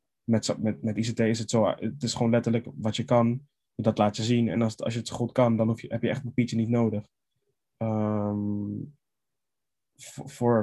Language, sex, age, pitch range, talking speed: Dutch, male, 20-39, 110-125 Hz, 220 wpm